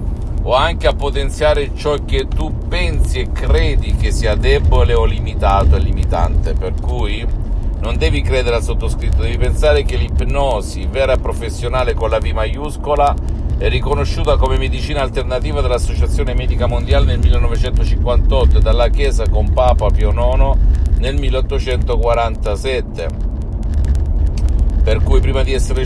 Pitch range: 70-105 Hz